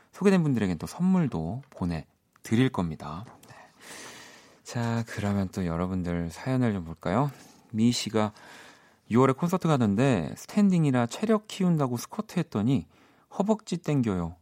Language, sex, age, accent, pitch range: Korean, male, 40-59, native, 90-135 Hz